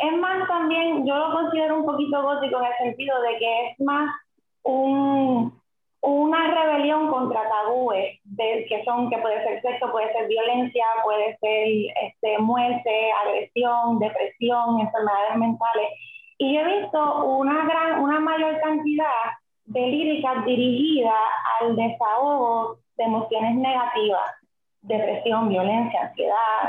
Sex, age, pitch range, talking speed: female, 20-39, 230-295 Hz, 130 wpm